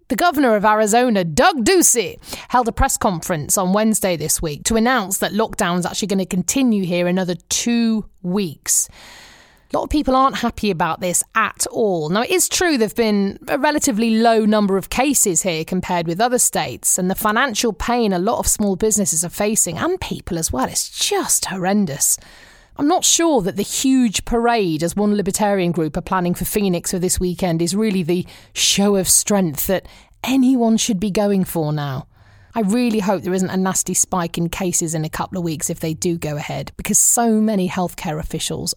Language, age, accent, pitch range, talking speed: English, 30-49, British, 175-230 Hz, 200 wpm